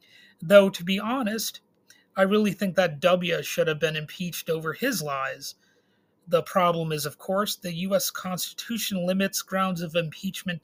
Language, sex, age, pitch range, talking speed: English, male, 30-49, 165-200 Hz, 160 wpm